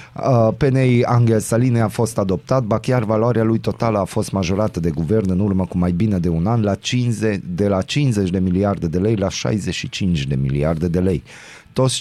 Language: Romanian